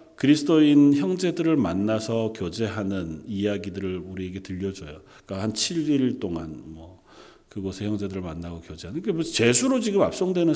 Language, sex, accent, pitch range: Korean, male, native, 95-125 Hz